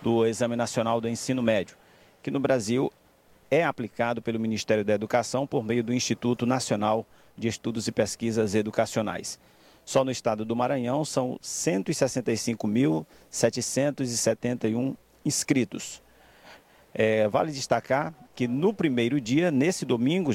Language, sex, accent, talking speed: Portuguese, male, Brazilian, 120 wpm